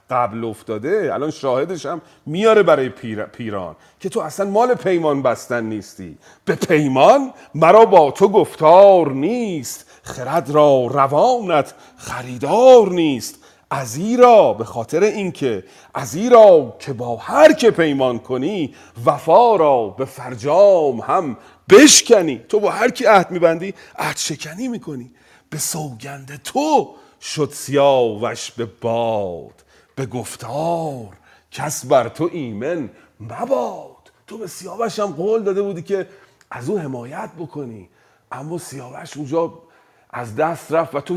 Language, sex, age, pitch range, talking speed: Persian, male, 40-59, 130-195 Hz, 130 wpm